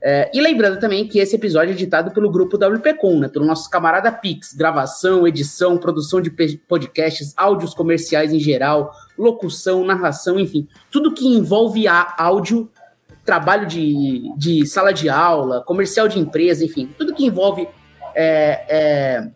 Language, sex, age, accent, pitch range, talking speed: English, male, 20-39, Brazilian, 150-185 Hz, 150 wpm